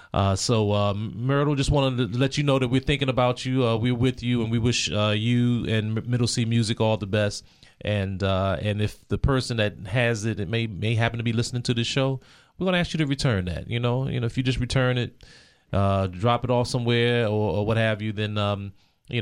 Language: English